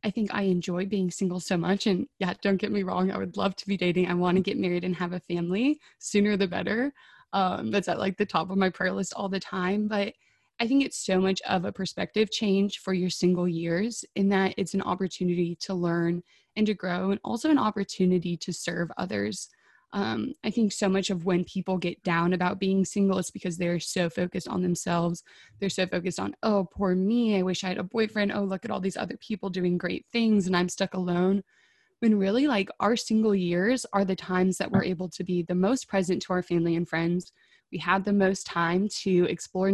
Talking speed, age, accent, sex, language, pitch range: 230 wpm, 20-39, American, female, English, 180-205 Hz